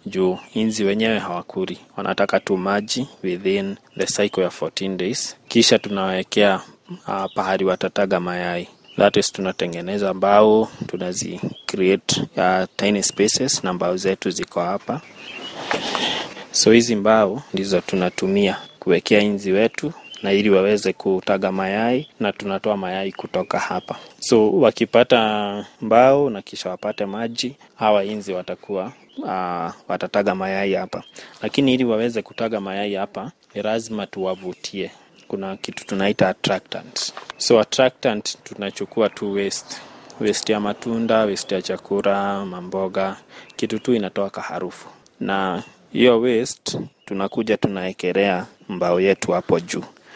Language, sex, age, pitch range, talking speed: Swahili, male, 20-39, 95-115 Hz, 120 wpm